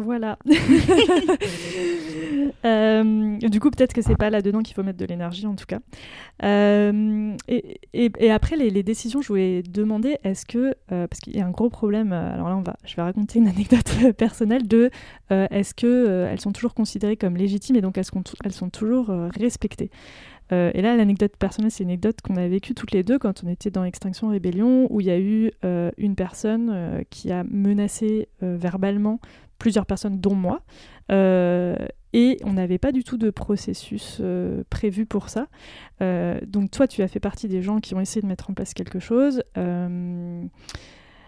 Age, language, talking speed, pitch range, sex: 20-39, French, 200 wpm, 185-230 Hz, female